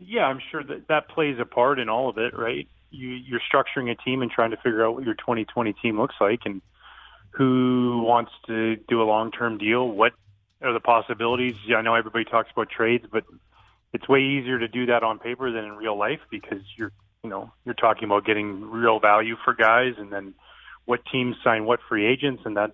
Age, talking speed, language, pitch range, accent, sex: 30-49, 220 wpm, English, 105-125 Hz, American, male